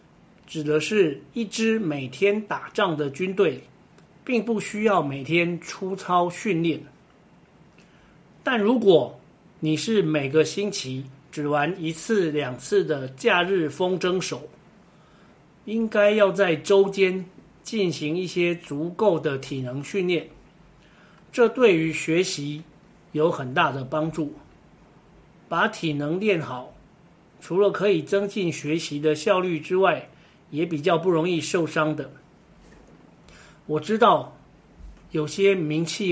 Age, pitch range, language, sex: 50-69, 155-195 Hz, Chinese, male